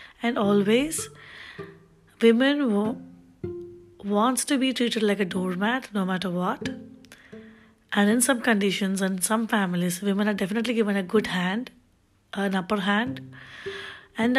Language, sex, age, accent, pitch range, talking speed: Telugu, female, 20-39, native, 195-250 Hz, 135 wpm